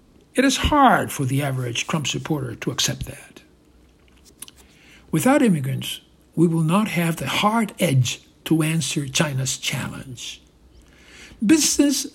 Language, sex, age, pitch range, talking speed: English, male, 60-79, 135-200 Hz, 125 wpm